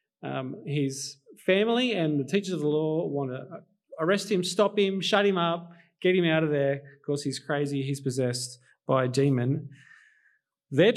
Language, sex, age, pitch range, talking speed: English, male, 30-49, 135-195 Hz, 180 wpm